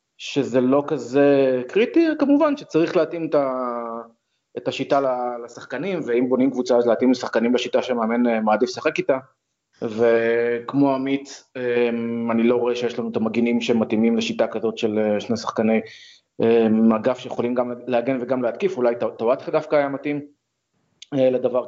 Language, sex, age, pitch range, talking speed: Hebrew, male, 30-49, 115-140 Hz, 140 wpm